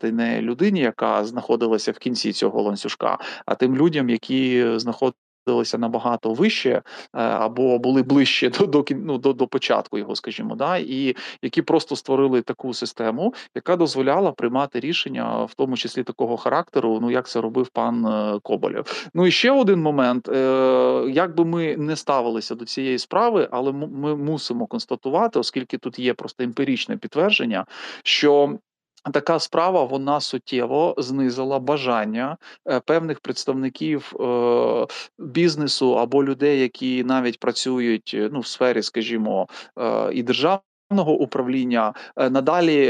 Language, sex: Ukrainian, male